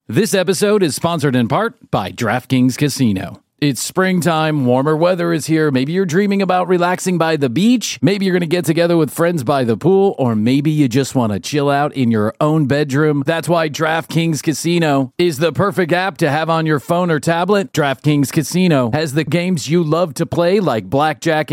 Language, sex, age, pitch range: English, male, 40-59, 135-175 Hz